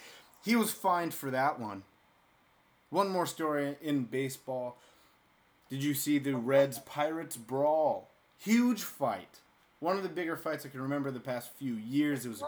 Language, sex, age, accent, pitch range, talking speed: English, male, 30-49, American, 130-155 Hz, 165 wpm